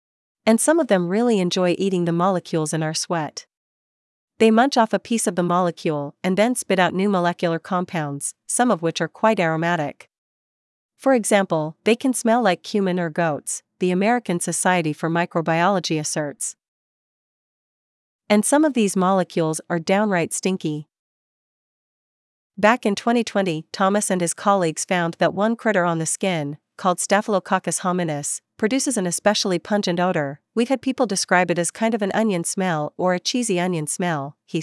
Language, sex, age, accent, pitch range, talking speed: English, female, 40-59, American, 165-210 Hz, 165 wpm